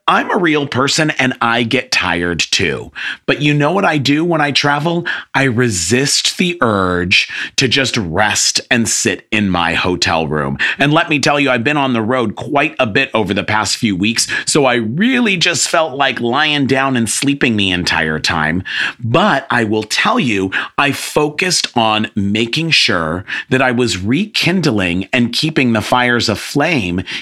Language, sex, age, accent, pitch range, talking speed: English, male, 40-59, American, 110-150 Hz, 180 wpm